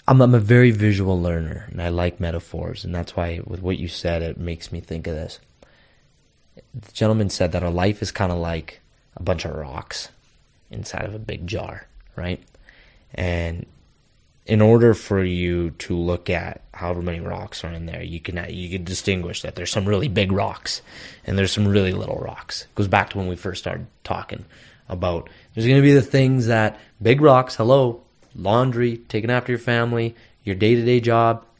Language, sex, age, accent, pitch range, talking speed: English, male, 20-39, American, 90-120 Hz, 195 wpm